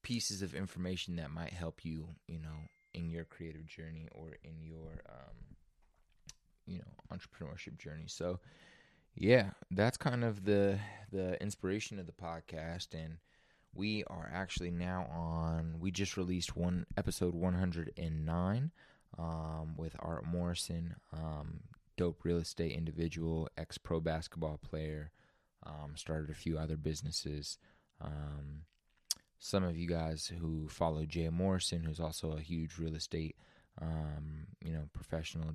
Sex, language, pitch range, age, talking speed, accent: male, English, 80-90 Hz, 20-39, 140 wpm, American